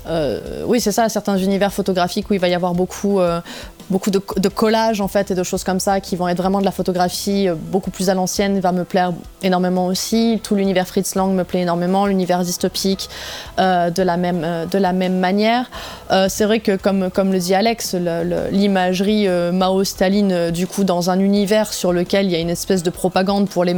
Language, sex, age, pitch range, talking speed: French, female, 20-39, 180-200 Hz, 230 wpm